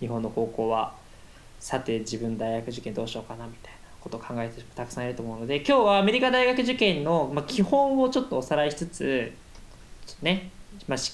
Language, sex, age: Japanese, male, 20-39